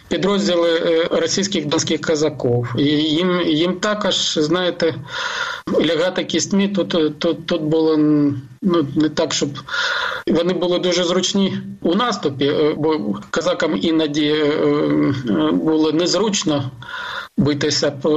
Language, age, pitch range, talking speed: Ukrainian, 50-69, 155-195 Hz, 100 wpm